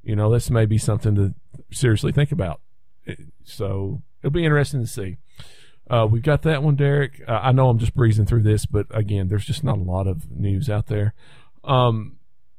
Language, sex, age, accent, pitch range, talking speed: English, male, 40-59, American, 105-125 Hz, 200 wpm